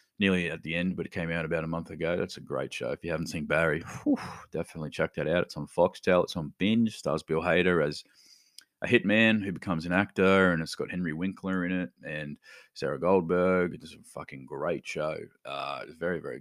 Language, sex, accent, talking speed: English, male, Australian, 220 wpm